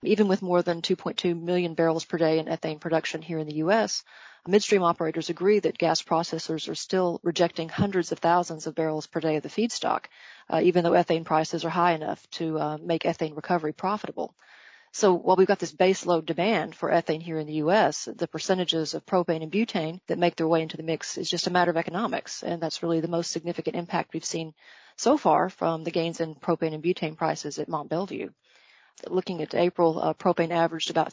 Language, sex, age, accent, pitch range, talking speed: English, female, 40-59, American, 160-180 Hz, 210 wpm